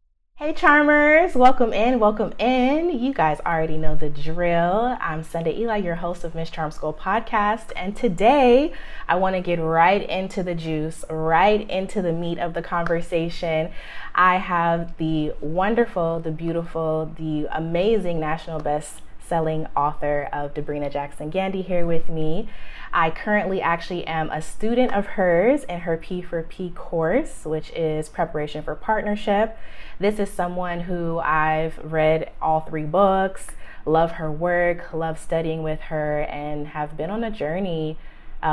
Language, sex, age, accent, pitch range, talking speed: English, female, 20-39, American, 155-190 Hz, 150 wpm